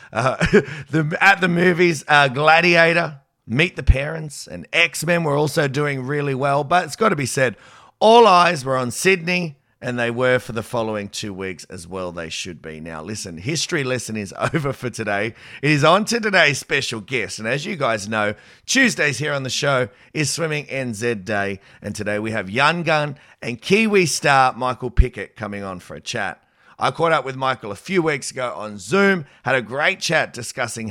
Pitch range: 105-160 Hz